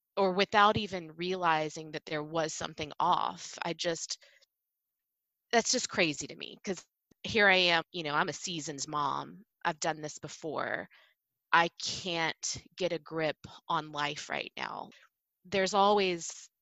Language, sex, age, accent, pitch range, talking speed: English, female, 20-39, American, 160-190 Hz, 150 wpm